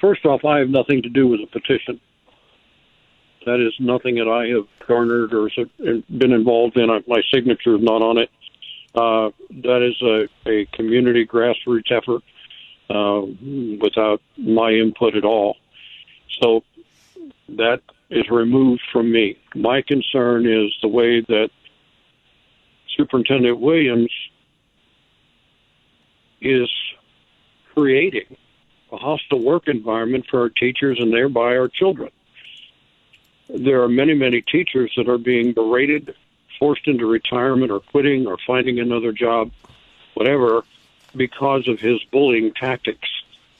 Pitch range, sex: 115-135 Hz, male